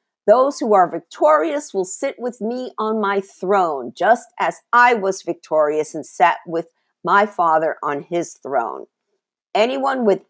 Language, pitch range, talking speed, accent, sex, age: English, 170-250 Hz, 150 wpm, American, female, 50-69